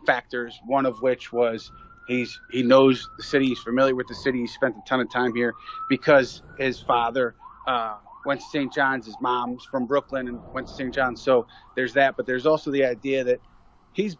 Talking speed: 205 wpm